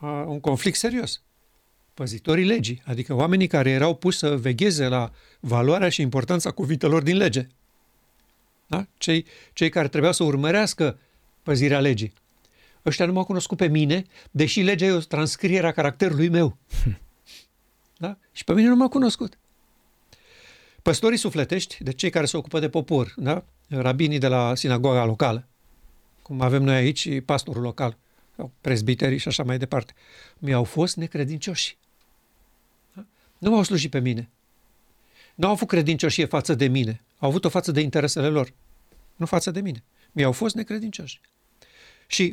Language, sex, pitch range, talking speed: Romanian, male, 130-180 Hz, 150 wpm